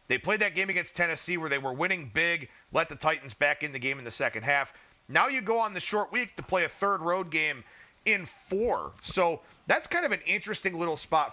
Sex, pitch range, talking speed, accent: male, 145-205 Hz, 240 wpm, American